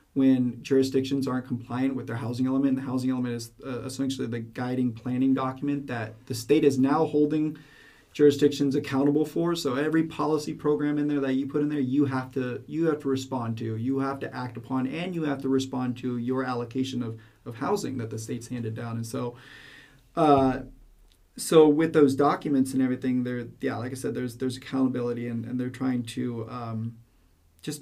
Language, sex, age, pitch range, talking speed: English, male, 30-49, 125-145 Hz, 200 wpm